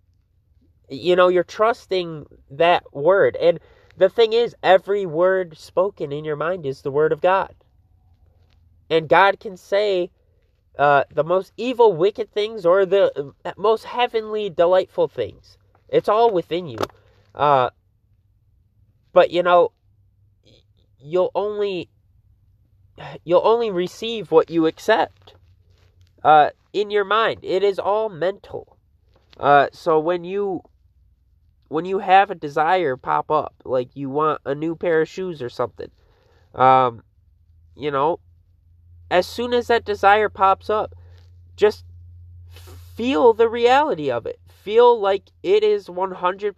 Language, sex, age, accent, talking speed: English, male, 20-39, American, 135 wpm